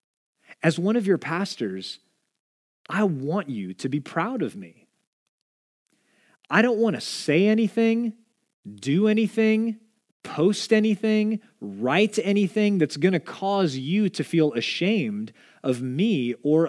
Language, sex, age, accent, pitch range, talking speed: English, male, 30-49, American, 145-205 Hz, 130 wpm